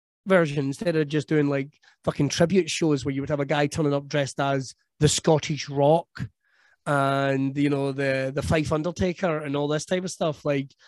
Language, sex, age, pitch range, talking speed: English, male, 20-39, 140-160 Hz, 200 wpm